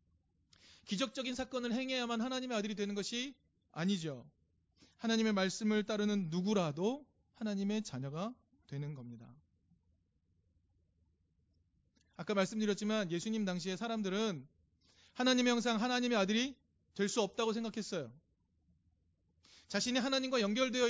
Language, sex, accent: Korean, male, native